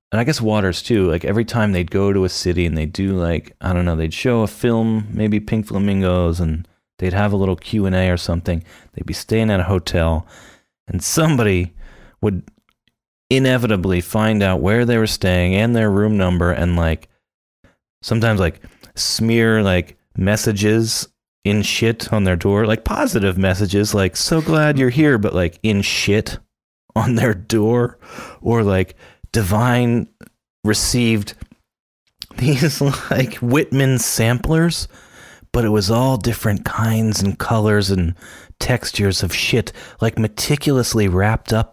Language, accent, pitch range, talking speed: English, American, 95-115 Hz, 155 wpm